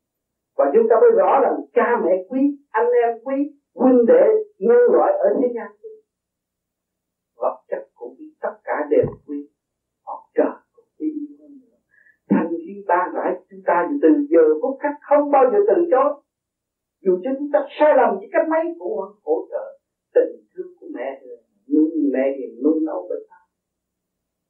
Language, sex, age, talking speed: Vietnamese, male, 50-69, 175 wpm